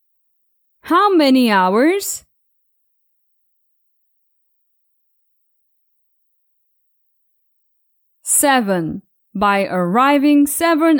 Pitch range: 210-315 Hz